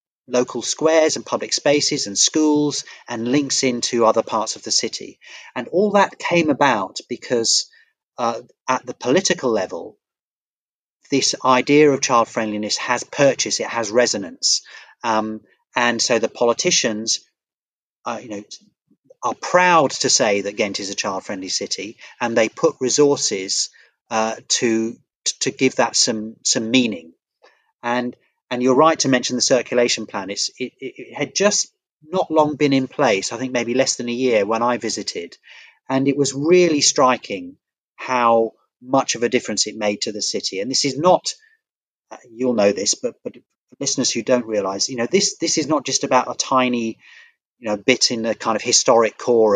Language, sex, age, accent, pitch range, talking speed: English, male, 30-49, British, 120-160 Hz, 175 wpm